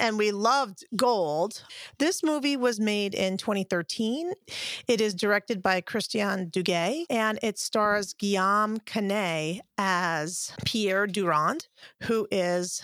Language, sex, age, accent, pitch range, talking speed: English, female, 40-59, American, 200-255 Hz, 120 wpm